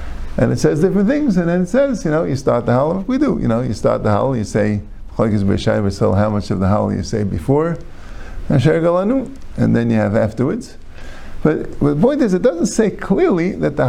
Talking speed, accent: 210 wpm, American